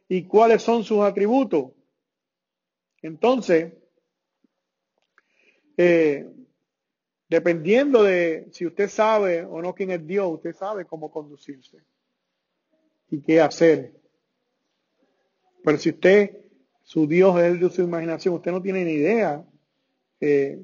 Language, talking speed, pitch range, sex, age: English, 115 wpm, 160-205 Hz, male, 40-59